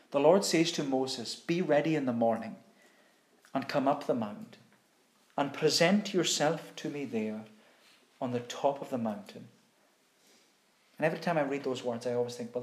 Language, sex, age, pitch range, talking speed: English, male, 40-59, 140-200 Hz, 180 wpm